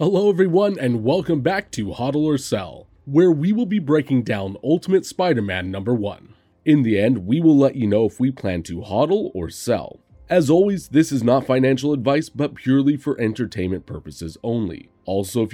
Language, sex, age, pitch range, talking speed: English, male, 30-49, 105-170 Hz, 190 wpm